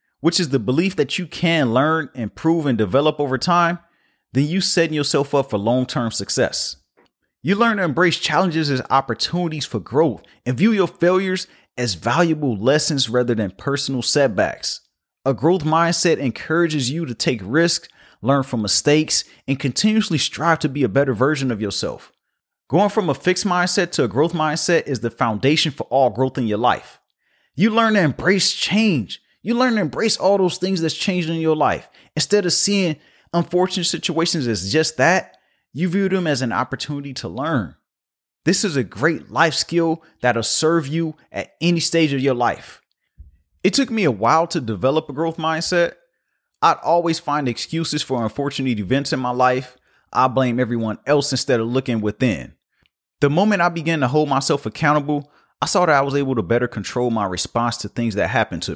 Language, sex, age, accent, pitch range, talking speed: English, male, 30-49, American, 125-170 Hz, 185 wpm